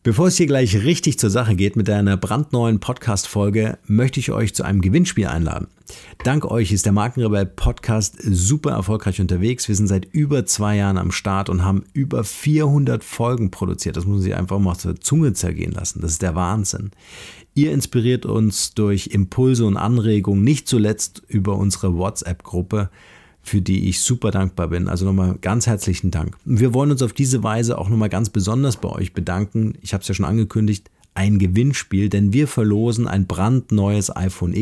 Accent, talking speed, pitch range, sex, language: German, 180 wpm, 95-120 Hz, male, German